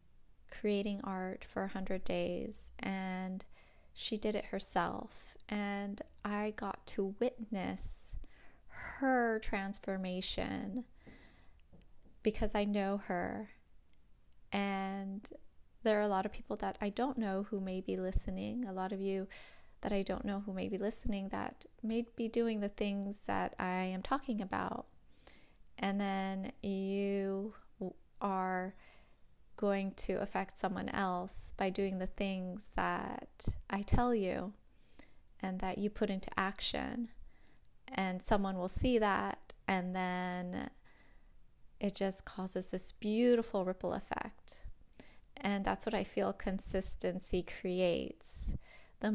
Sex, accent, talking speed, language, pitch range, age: female, American, 130 wpm, English, 185-210 Hz, 20-39